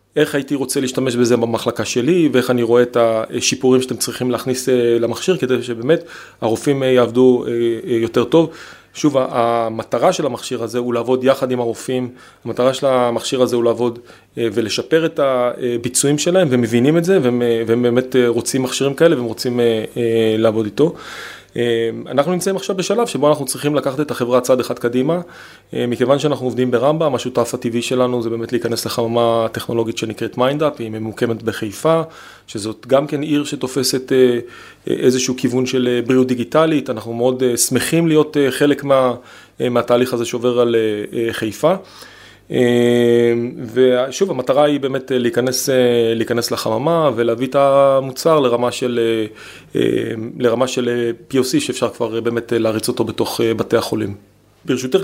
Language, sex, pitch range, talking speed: Hebrew, male, 120-140 Hz, 145 wpm